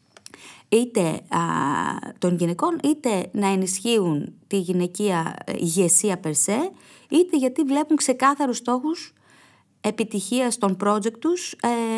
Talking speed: 100 wpm